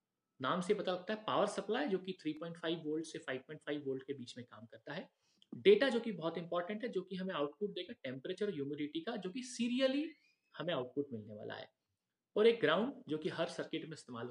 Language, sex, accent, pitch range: Hindi, male, native, 160-230 Hz